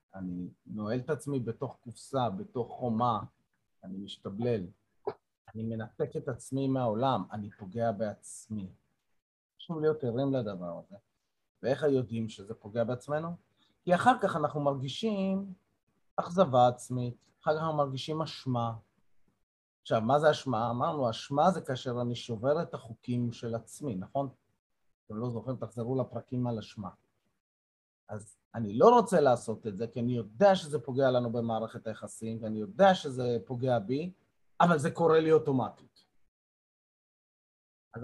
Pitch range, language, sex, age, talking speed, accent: 115-155 Hz, Hebrew, male, 30-49, 140 wpm, native